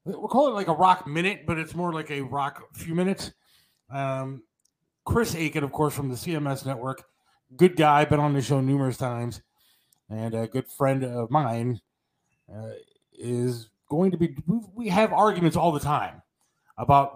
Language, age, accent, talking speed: English, 30-49, American, 175 wpm